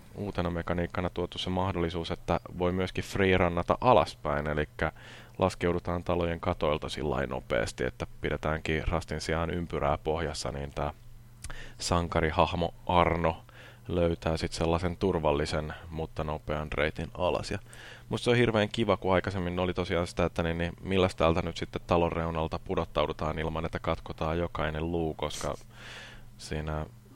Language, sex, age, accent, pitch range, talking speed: Finnish, male, 20-39, native, 80-95 Hz, 135 wpm